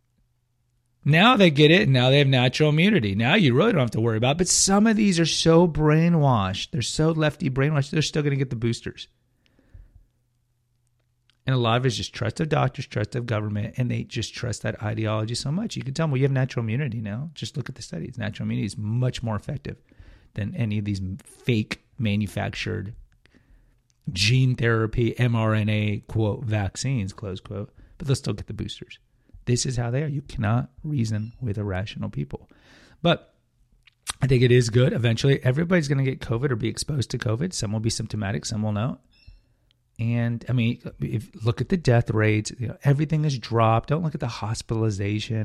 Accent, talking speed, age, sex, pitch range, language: American, 200 wpm, 30-49, male, 110-135 Hz, English